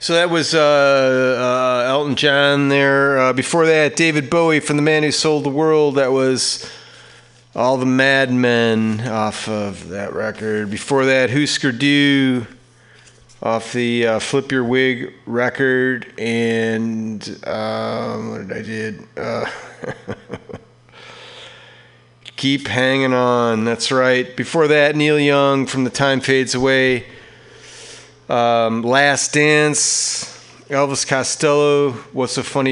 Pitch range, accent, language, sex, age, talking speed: 115-145 Hz, American, English, male, 40-59, 125 wpm